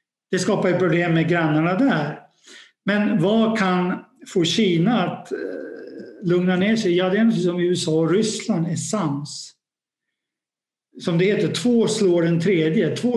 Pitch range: 165-215 Hz